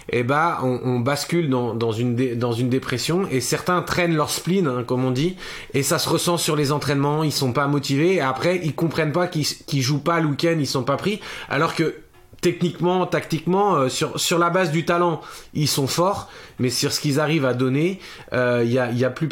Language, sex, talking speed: French, male, 235 wpm